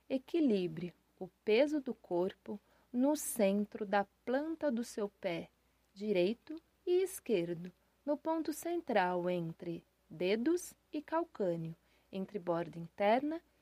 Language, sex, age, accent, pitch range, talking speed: Portuguese, female, 30-49, Brazilian, 200-295 Hz, 110 wpm